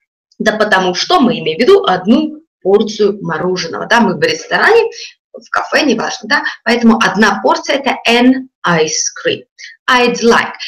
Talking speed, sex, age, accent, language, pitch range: 155 wpm, female, 20-39, native, Russian, 205-260 Hz